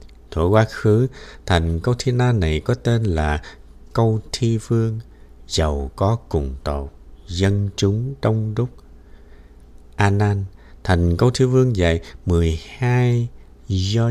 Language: Vietnamese